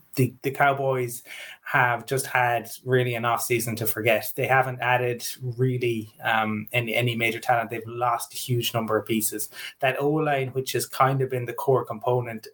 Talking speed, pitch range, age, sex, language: 180 wpm, 115-130 Hz, 20-39, male, English